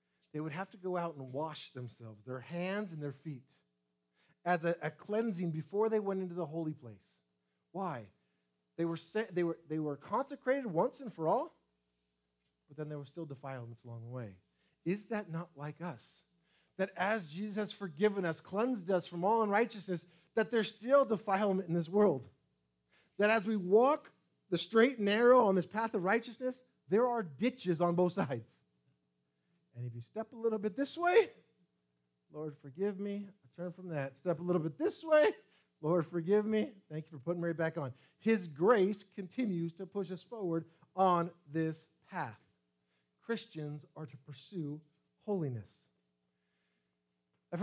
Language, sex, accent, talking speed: English, male, American, 175 wpm